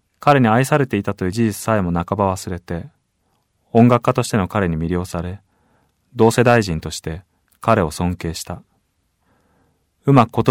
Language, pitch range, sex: Japanese, 90-120 Hz, male